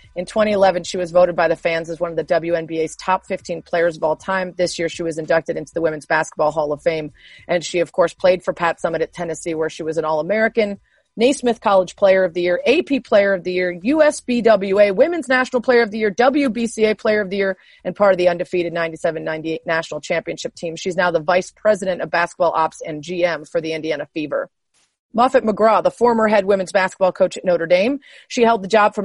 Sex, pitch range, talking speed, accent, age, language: female, 165-215 Hz, 225 wpm, American, 30-49, English